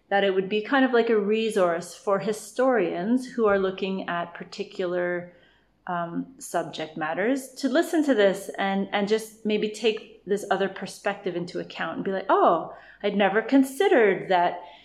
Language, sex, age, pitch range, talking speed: English, female, 30-49, 180-215 Hz, 165 wpm